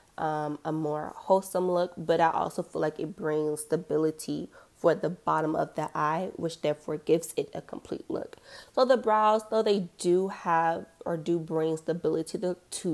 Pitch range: 155-195 Hz